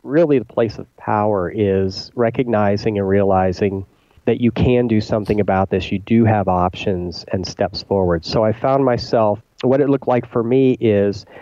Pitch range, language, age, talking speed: 105-120 Hz, English, 40-59, 180 wpm